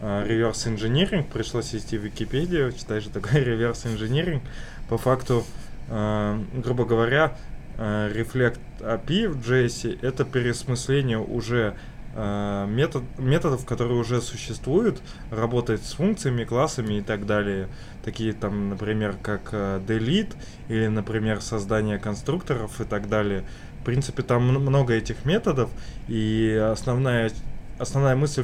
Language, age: Russian, 20-39